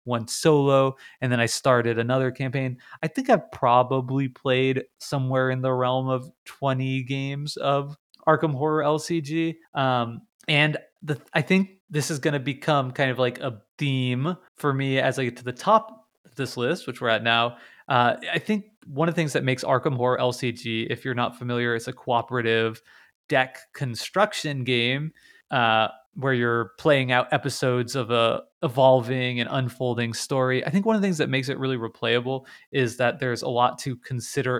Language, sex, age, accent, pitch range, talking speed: English, male, 30-49, American, 120-140 Hz, 185 wpm